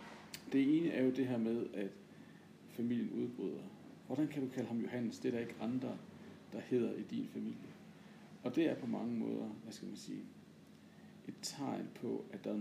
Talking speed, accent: 200 wpm, native